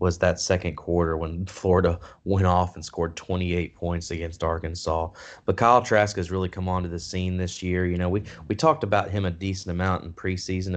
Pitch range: 85-95 Hz